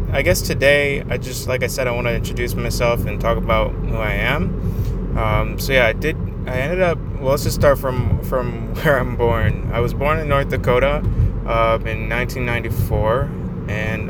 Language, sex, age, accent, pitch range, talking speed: English, male, 20-39, American, 110-130 Hz, 195 wpm